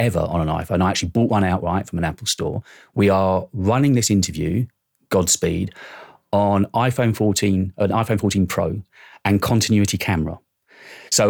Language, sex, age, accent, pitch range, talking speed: English, male, 30-49, British, 95-115 Hz, 160 wpm